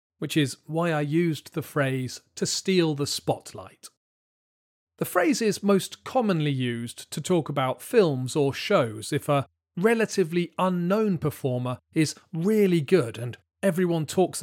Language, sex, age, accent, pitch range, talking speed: English, male, 40-59, British, 130-185 Hz, 140 wpm